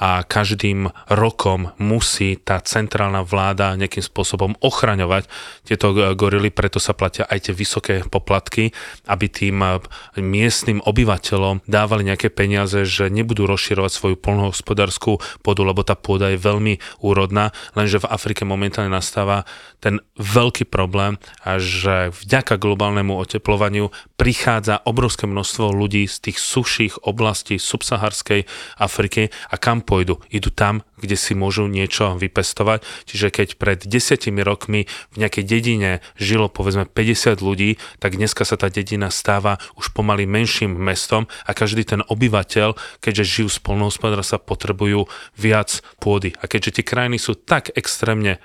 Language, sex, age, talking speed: Slovak, male, 30-49, 135 wpm